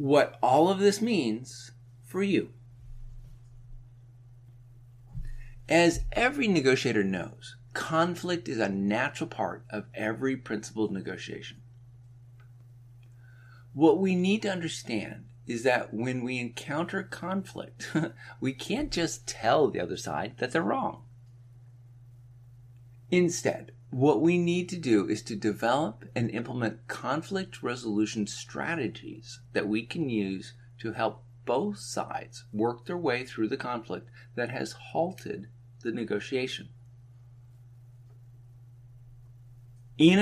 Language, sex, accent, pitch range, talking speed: English, male, American, 120-130 Hz, 110 wpm